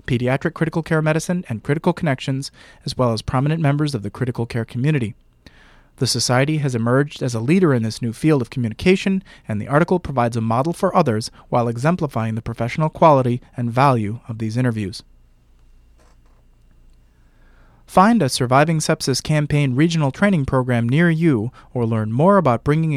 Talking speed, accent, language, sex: 165 wpm, American, English, male